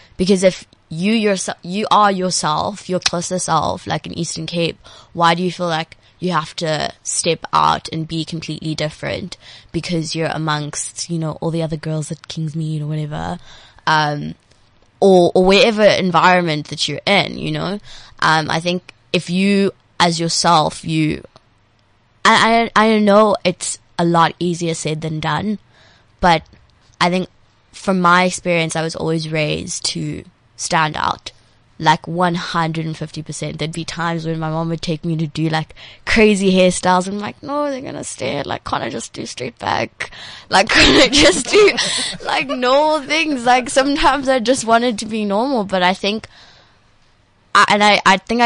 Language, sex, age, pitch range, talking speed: English, female, 20-39, 155-195 Hz, 170 wpm